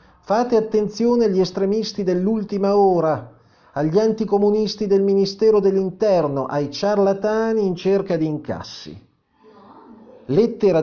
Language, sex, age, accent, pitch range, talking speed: Italian, male, 40-59, native, 140-195 Hz, 100 wpm